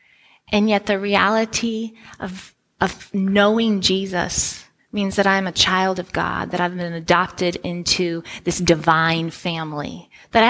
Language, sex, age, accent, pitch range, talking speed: English, female, 20-39, American, 180-215 Hz, 135 wpm